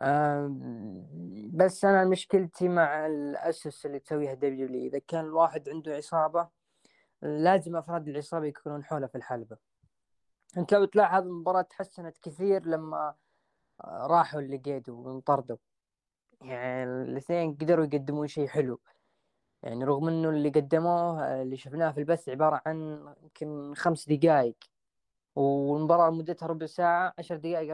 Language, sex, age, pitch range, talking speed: Arabic, female, 20-39, 140-170 Hz, 120 wpm